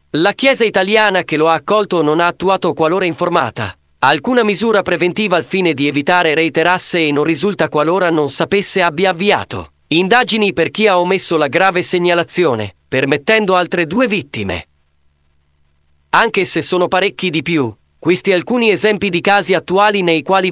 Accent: native